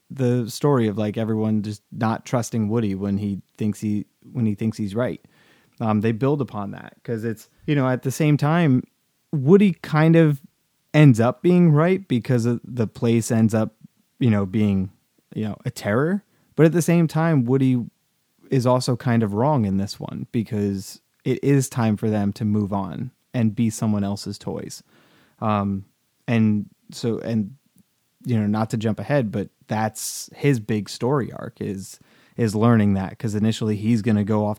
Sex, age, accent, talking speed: male, 30-49, American, 185 wpm